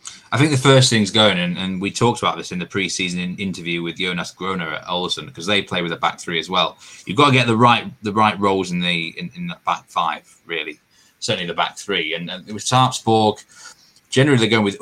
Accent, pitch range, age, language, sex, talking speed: British, 90-115 Hz, 20-39, English, male, 240 wpm